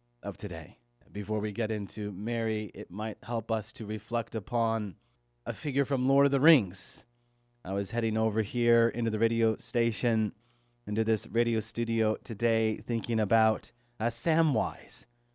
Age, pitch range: 30-49, 120-150 Hz